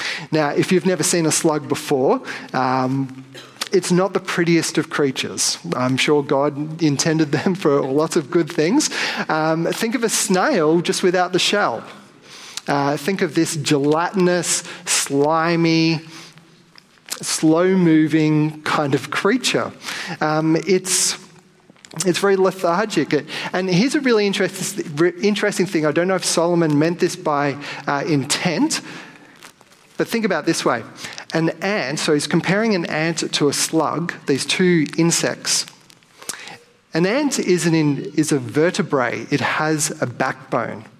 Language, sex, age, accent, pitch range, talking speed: English, male, 30-49, Australian, 145-180 Hz, 145 wpm